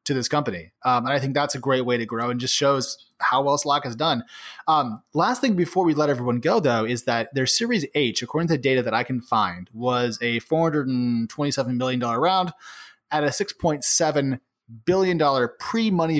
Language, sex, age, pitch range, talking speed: English, male, 20-39, 125-155 Hz, 205 wpm